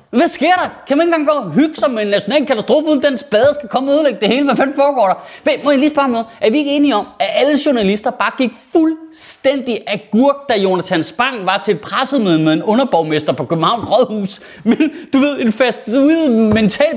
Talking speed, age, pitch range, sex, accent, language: 225 wpm, 20-39, 205-280 Hz, male, native, Danish